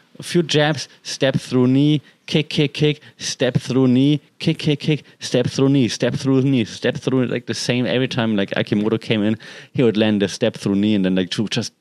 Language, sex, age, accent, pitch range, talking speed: English, male, 30-49, German, 105-140 Hz, 220 wpm